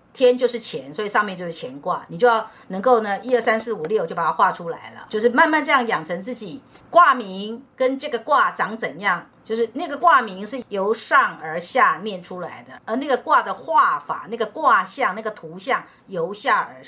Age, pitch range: 50-69, 195-275 Hz